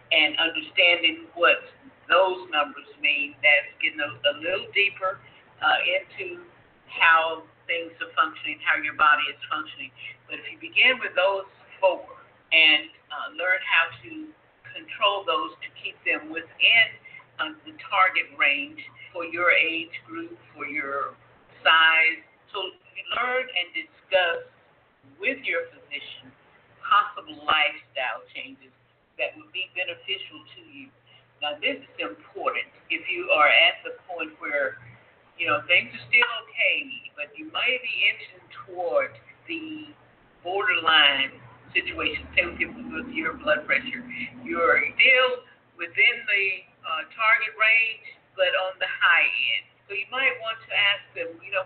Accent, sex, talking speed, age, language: American, female, 140 wpm, 50-69, English